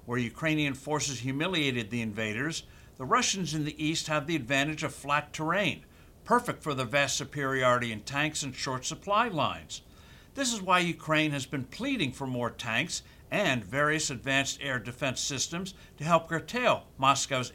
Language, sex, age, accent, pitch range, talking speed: English, male, 60-79, American, 130-170 Hz, 165 wpm